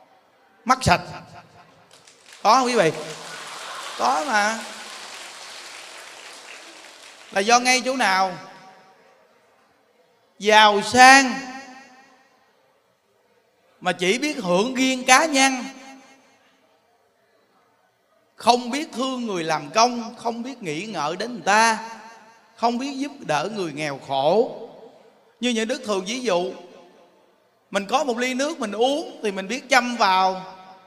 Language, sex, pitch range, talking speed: Vietnamese, male, 190-260 Hz, 115 wpm